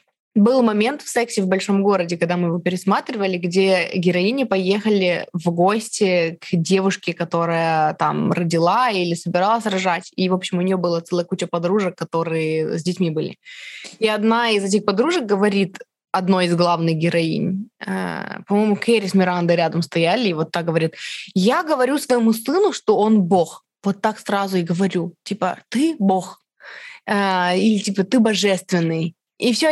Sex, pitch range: female, 175-220 Hz